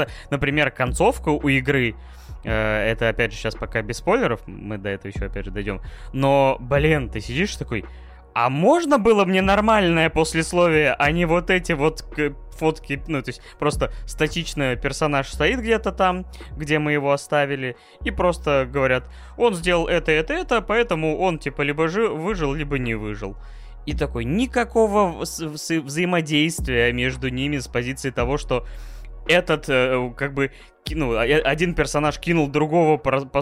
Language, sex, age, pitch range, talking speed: Russian, male, 20-39, 115-155 Hz, 150 wpm